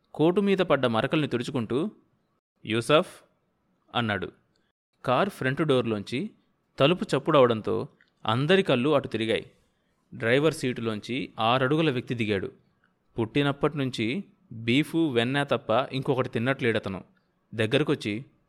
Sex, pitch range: male, 115-155 Hz